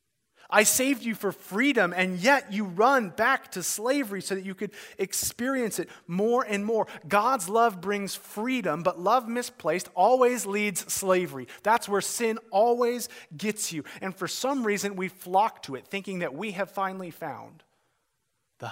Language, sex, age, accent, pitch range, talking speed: English, male, 30-49, American, 120-200 Hz, 165 wpm